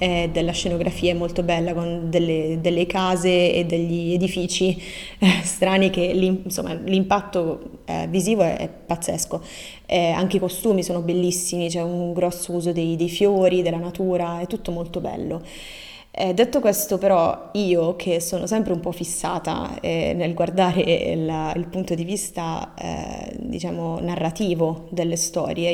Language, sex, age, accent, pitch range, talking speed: Italian, female, 20-39, native, 170-185 Hz, 145 wpm